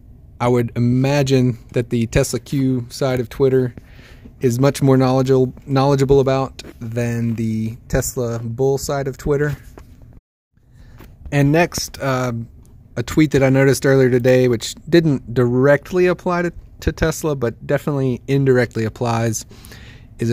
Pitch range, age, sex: 120-140 Hz, 30-49, male